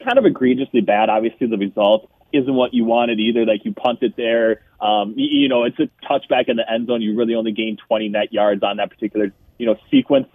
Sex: male